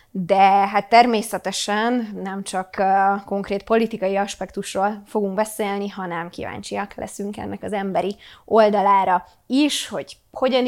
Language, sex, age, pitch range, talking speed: Hungarian, female, 20-39, 195-225 Hz, 120 wpm